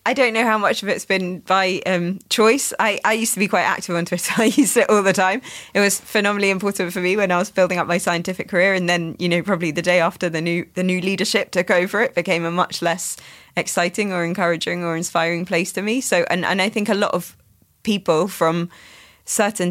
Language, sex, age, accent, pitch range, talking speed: English, female, 20-39, British, 165-195 Hz, 240 wpm